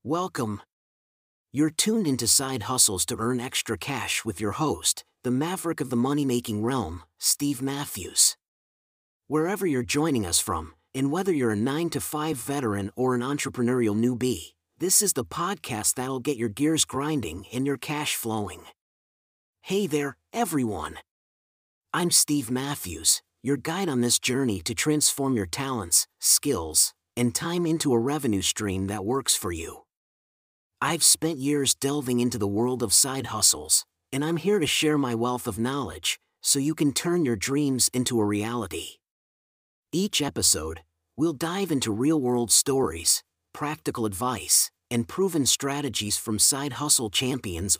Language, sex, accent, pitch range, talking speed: English, male, American, 110-150 Hz, 150 wpm